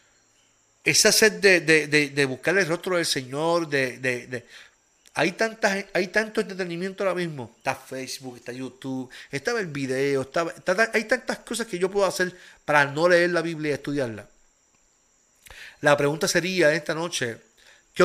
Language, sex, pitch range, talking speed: Spanish, male, 135-175 Hz, 165 wpm